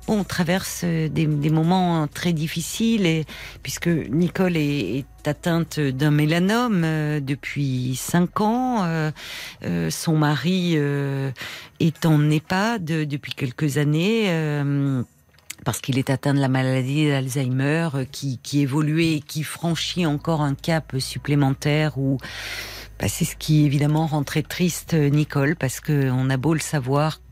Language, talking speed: French, 150 wpm